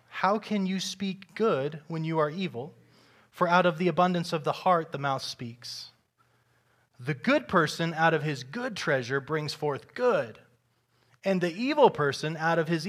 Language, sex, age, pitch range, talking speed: English, male, 20-39, 120-155 Hz, 175 wpm